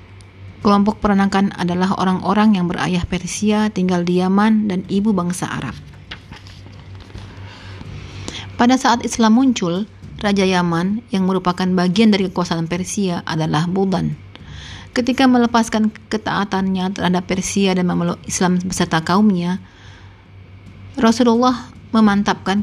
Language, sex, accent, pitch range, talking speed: Indonesian, female, native, 150-200 Hz, 105 wpm